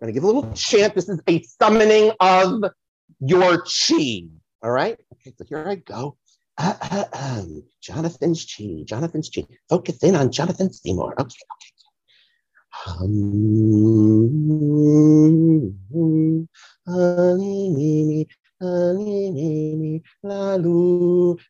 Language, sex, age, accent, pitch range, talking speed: English, male, 50-69, American, 155-250 Hz, 95 wpm